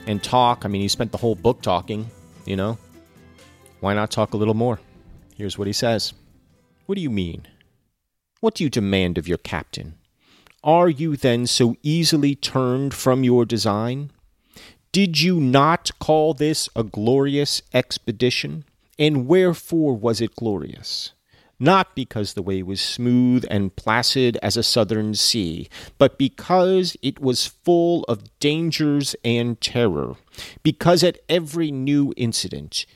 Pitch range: 105-140 Hz